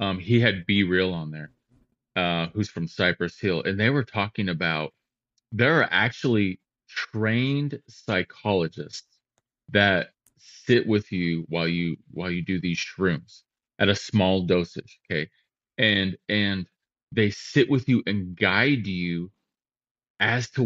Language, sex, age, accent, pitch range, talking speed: English, male, 30-49, American, 95-125 Hz, 140 wpm